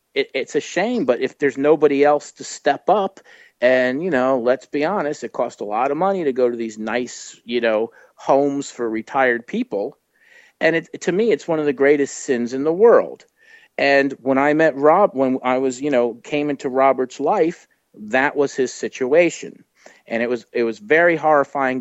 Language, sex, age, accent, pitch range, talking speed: English, male, 50-69, American, 120-150 Hz, 200 wpm